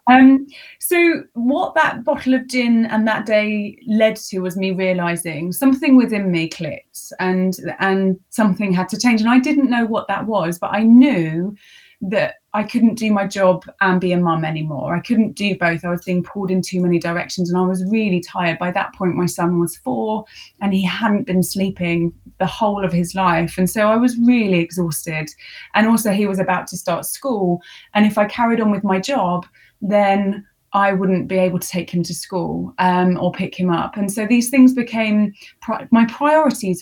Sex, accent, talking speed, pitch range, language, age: female, British, 200 wpm, 185-240 Hz, English, 20-39